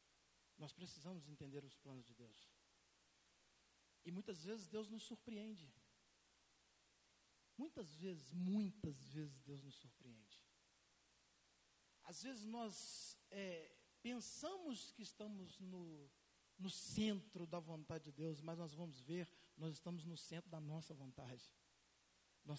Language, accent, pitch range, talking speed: Portuguese, Brazilian, 140-225 Hz, 120 wpm